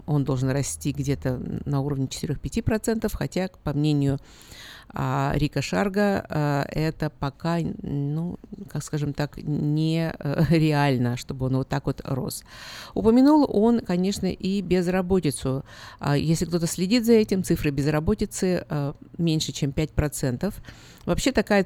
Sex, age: female, 50-69